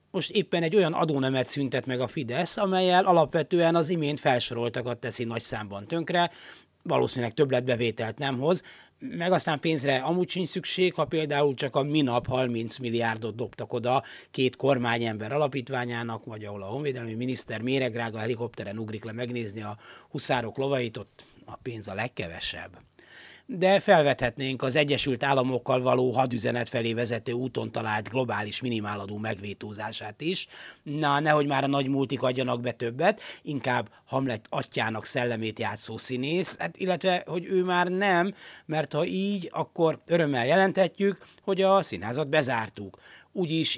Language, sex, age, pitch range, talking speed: Hungarian, male, 30-49, 115-160 Hz, 145 wpm